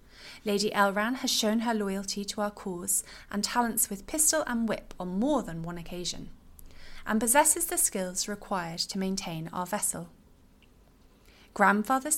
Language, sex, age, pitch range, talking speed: English, female, 30-49, 180-230 Hz, 150 wpm